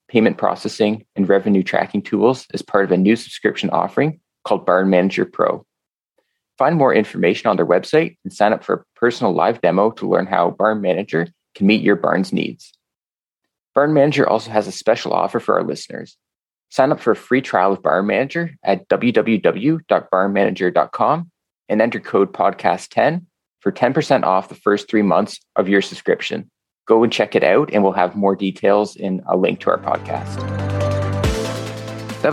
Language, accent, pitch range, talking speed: English, American, 95-110 Hz, 175 wpm